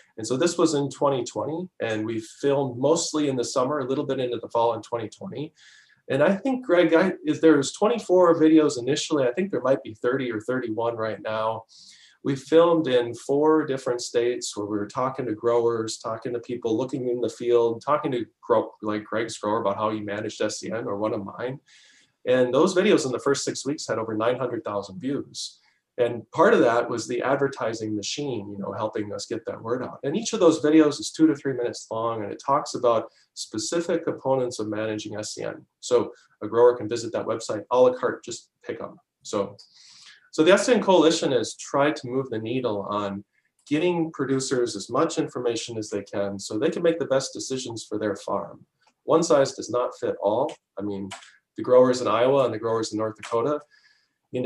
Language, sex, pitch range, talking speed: English, male, 110-155 Hz, 200 wpm